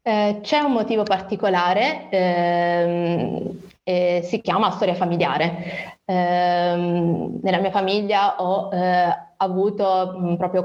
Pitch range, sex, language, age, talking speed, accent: 175-195 Hz, female, Italian, 20-39, 115 wpm, native